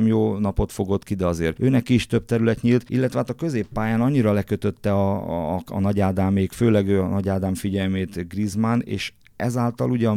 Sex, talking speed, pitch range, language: male, 190 wpm, 90-110 Hz, Hungarian